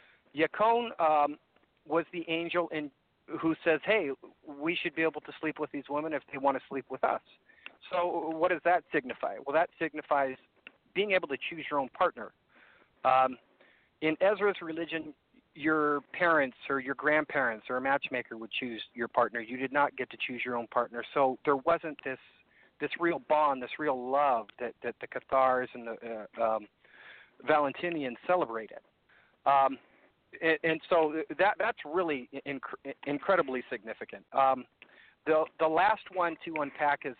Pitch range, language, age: 130-165 Hz, English, 40-59